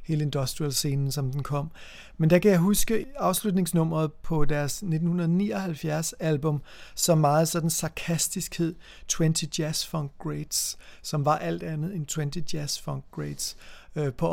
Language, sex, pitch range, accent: Danish, male, 155-175 Hz, native